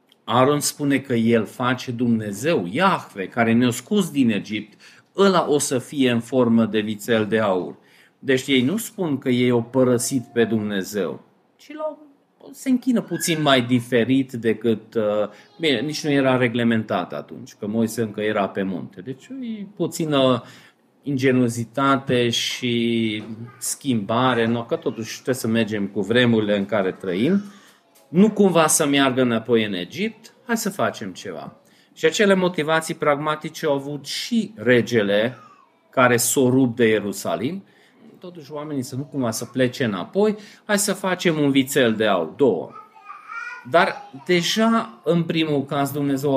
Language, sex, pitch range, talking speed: Romanian, male, 120-170 Hz, 145 wpm